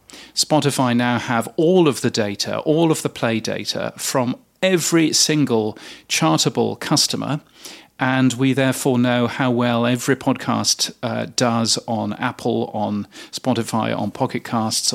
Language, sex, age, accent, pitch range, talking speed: English, male, 40-59, British, 115-140 Hz, 135 wpm